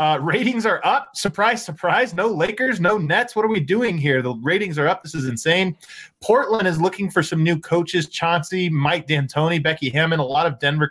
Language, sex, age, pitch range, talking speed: English, male, 20-39, 135-185 Hz, 210 wpm